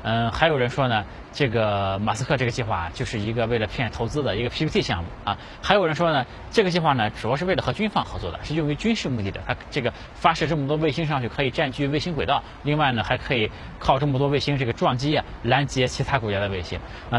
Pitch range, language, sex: 100-150 Hz, Chinese, male